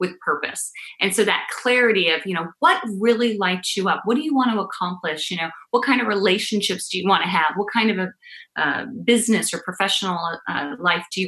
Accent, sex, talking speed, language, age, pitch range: American, female, 230 wpm, English, 30-49, 175-230 Hz